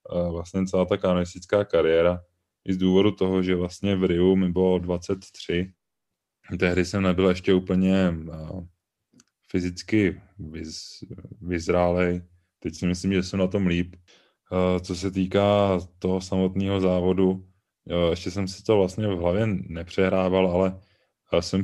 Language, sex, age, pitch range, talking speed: Czech, male, 20-39, 85-95 Hz, 130 wpm